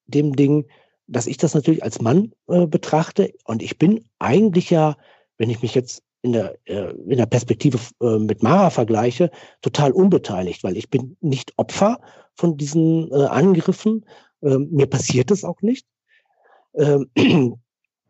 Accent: German